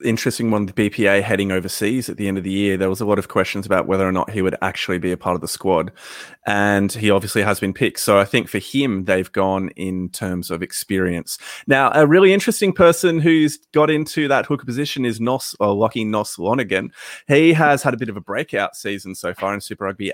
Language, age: English, 20-39